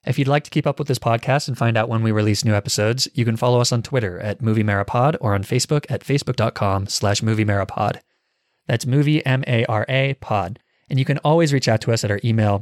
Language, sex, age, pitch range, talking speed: English, male, 20-39, 110-140 Hz, 240 wpm